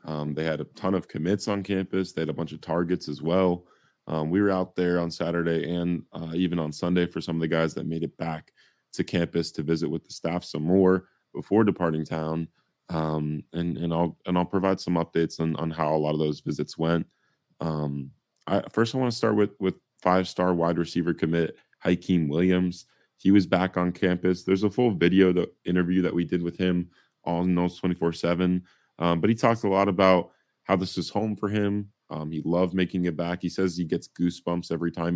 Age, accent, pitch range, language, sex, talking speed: 20-39, American, 80-95 Hz, English, male, 225 wpm